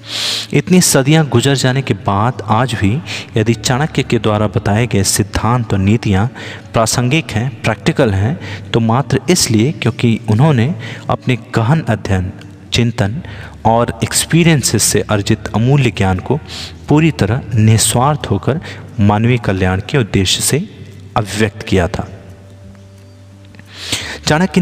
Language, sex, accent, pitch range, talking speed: Hindi, male, native, 100-125 Hz, 125 wpm